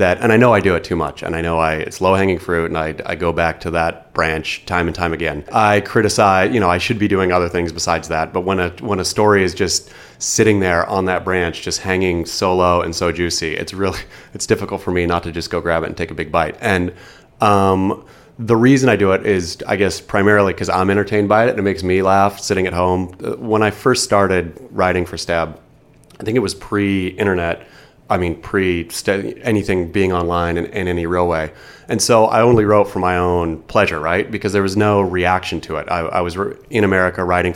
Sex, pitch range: male, 85-100 Hz